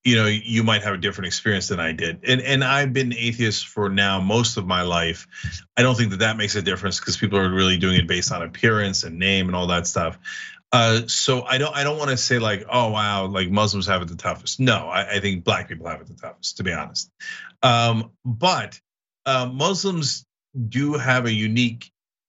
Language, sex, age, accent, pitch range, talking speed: English, male, 30-49, American, 100-135 Hz, 225 wpm